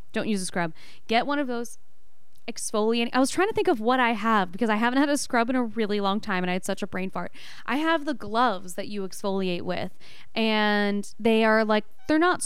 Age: 10-29